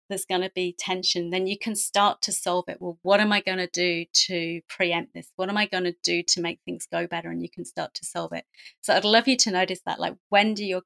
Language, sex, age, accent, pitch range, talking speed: English, female, 30-49, British, 185-235 Hz, 280 wpm